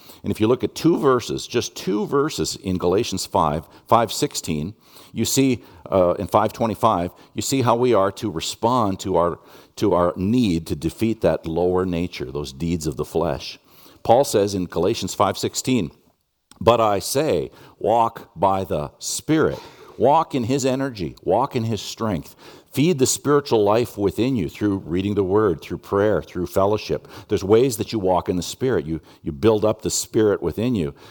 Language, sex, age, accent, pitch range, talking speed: English, male, 50-69, American, 90-120 Hz, 175 wpm